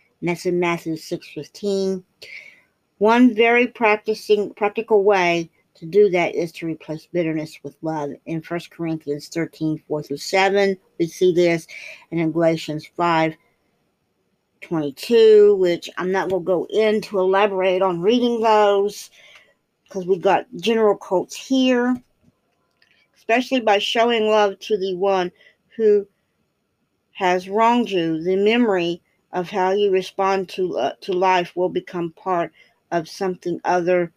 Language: English